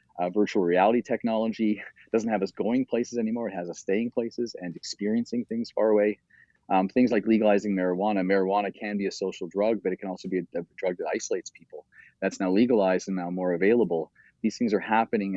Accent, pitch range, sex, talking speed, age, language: Canadian, 95-105 Hz, male, 205 wpm, 30-49, English